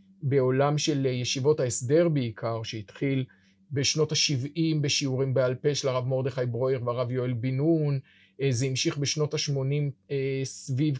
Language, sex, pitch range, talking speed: Hebrew, male, 130-165 Hz, 130 wpm